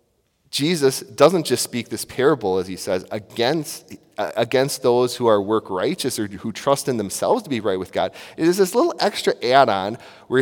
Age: 30-49